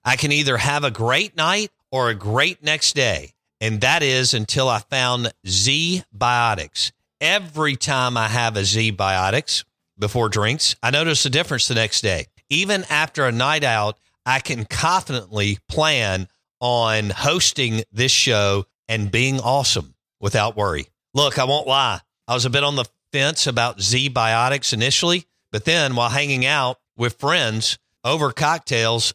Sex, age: male, 50-69